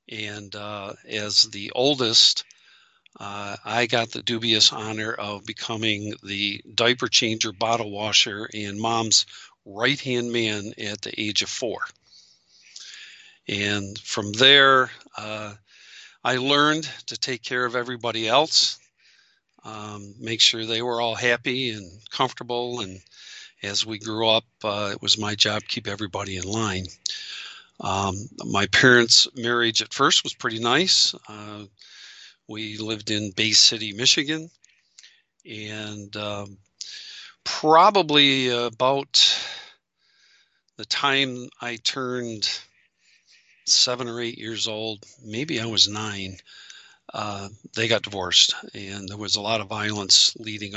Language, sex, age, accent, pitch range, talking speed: English, male, 50-69, American, 105-120 Hz, 130 wpm